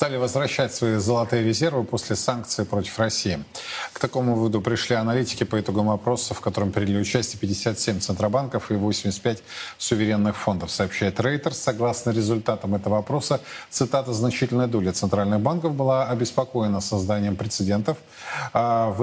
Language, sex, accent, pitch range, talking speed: Russian, male, native, 105-125 Hz, 135 wpm